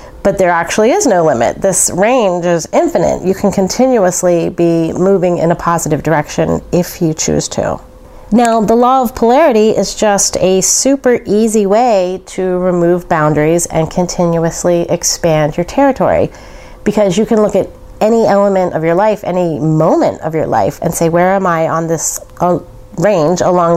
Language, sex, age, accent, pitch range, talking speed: English, female, 30-49, American, 170-215 Hz, 170 wpm